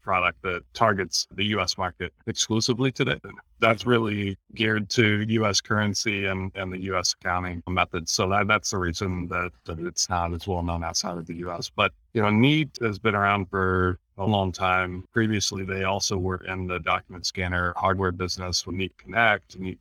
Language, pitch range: English, 90-105 Hz